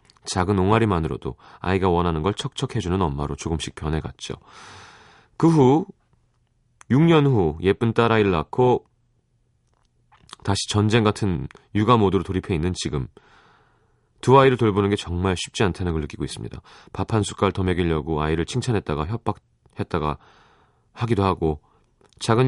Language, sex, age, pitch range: Korean, male, 30-49, 90-120 Hz